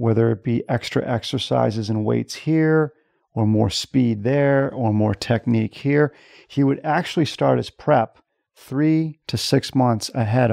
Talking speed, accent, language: 155 wpm, American, English